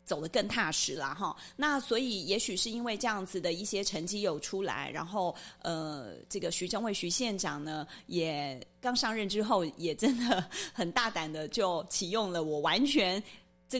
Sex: female